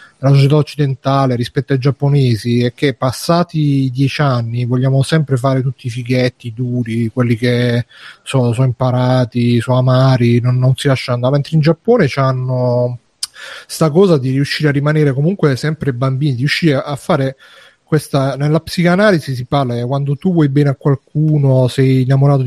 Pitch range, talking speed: 125-150 Hz, 165 wpm